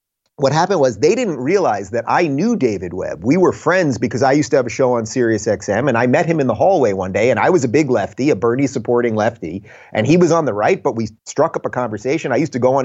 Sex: male